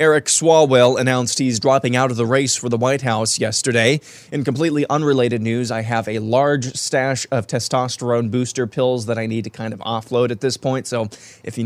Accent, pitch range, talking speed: American, 120-145 Hz, 205 wpm